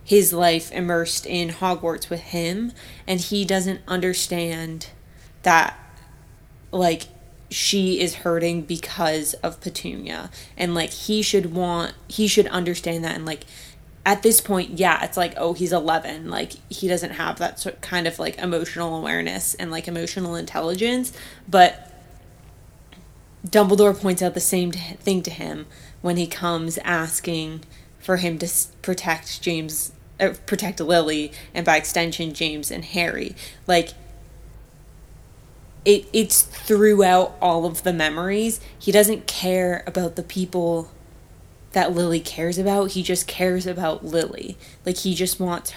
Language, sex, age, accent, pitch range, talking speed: English, female, 20-39, American, 165-185 Hz, 140 wpm